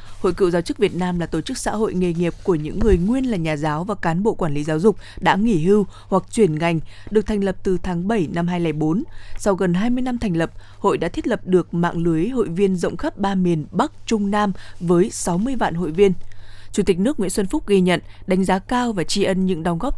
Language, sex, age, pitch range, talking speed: Vietnamese, female, 20-39, 170-210 Hz, 255 wpm